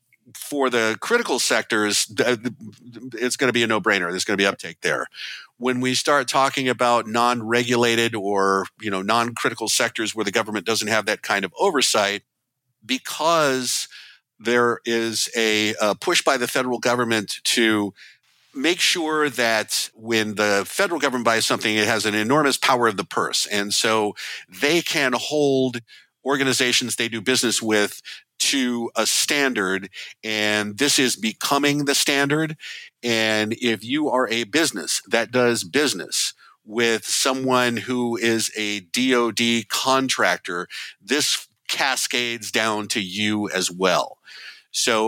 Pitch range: 110-130 Hz